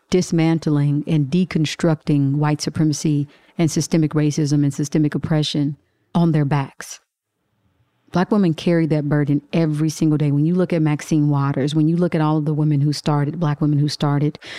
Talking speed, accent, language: 175 wpm, American, English